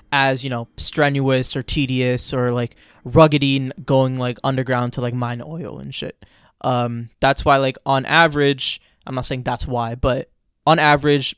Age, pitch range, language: 20-39, 125-145 Hz, English